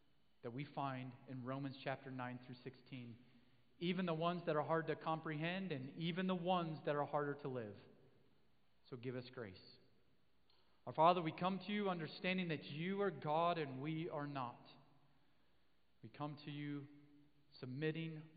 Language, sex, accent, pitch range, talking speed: English, male, American, 120-150 Hz, 165 wpm